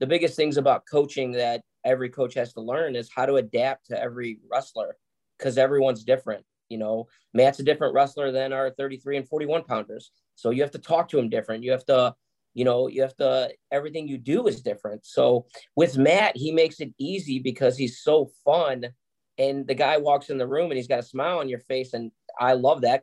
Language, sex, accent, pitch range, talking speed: English, male, American, 120-145 Hz, 220 wpm